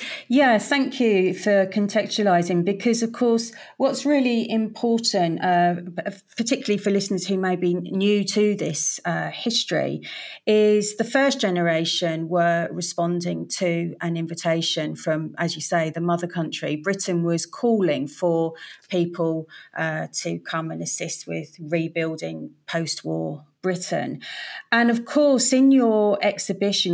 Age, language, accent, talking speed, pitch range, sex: 40-59, English, British, 130 wpm, 170-210 Hz, female